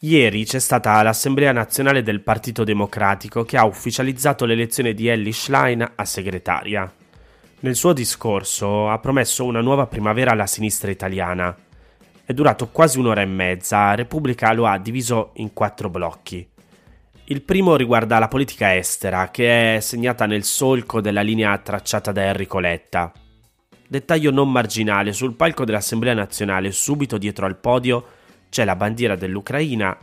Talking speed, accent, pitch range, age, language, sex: 145 wpm, native, 100-125 Hz, 20-39, Italian, male